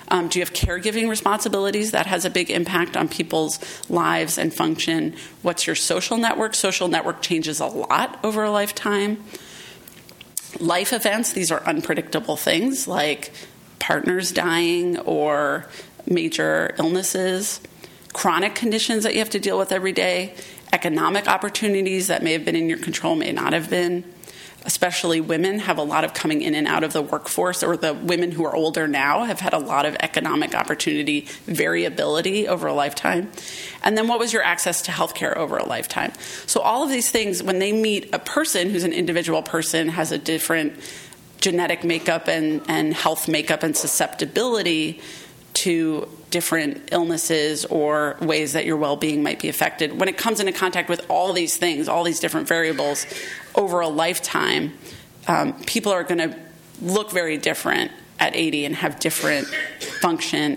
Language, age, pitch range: English, 30-49, 160-210 Hz